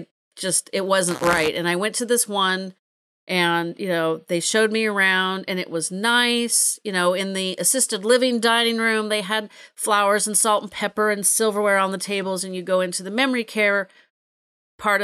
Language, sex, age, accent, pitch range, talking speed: English, female, 40-59, American, 175-220 Hz, 195 wpm